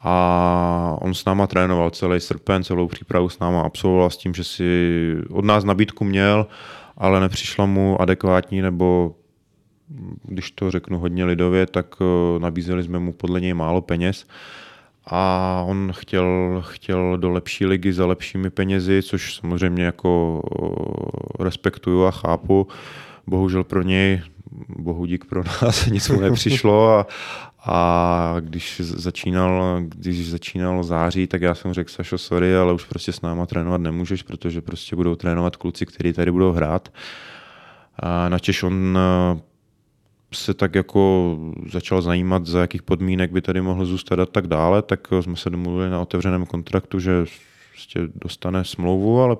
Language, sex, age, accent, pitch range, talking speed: Czech, male, 20-39, native, 90-95 Hz, 150 wpm